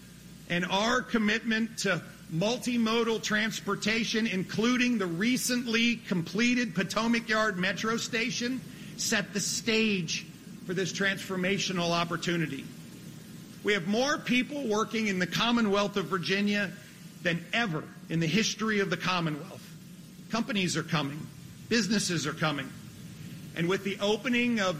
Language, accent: English, American